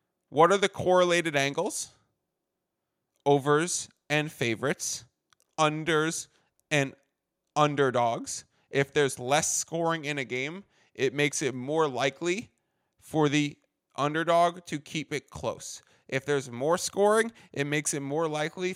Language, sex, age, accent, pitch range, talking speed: English, male, 30-49, American, 135-165 Hz, 125 wpm